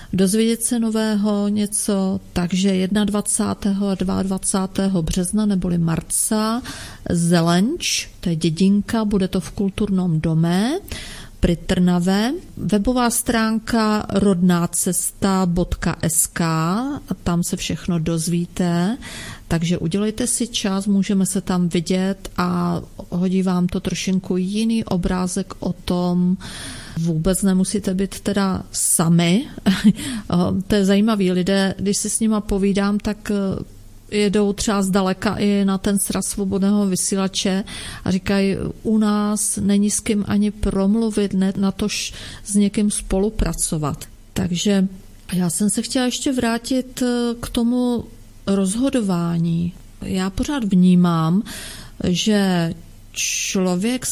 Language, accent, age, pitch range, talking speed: Czech, native, 40-59, 180-210 Hz, 110 wpm